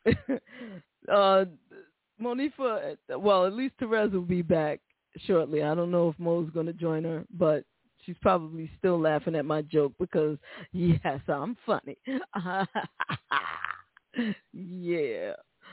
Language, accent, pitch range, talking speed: English, American, 165-210 Hz, 120 wpm